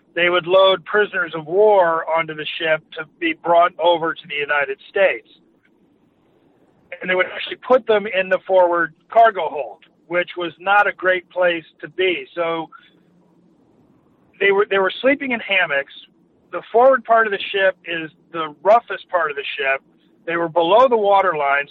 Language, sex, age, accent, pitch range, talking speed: English, male, 40-59, American, 165-200 Hz, 170 wpm